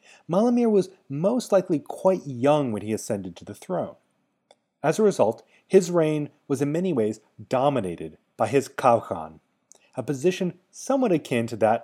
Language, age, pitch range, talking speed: English, 30-49, 120-180 Hz, 155 wpm